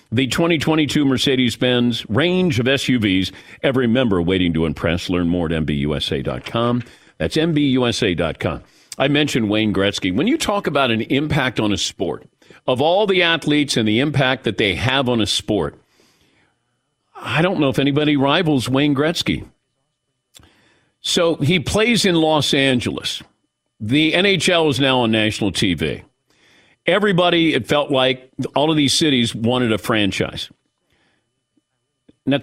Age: 50-69